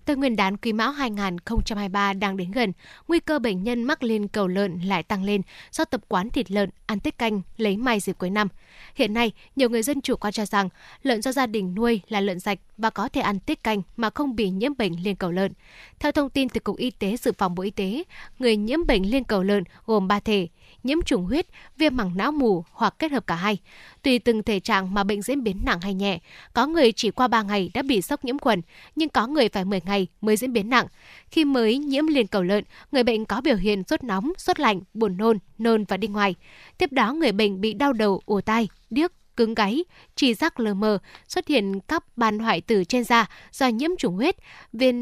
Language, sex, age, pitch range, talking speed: Vietnamese, female, 10-29, 205-260 Hz, 240 wpm